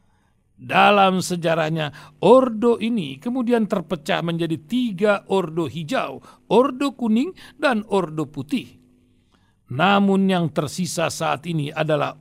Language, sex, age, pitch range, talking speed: Indonesian, male, 50-69, 155-230 Hz, 105 wpm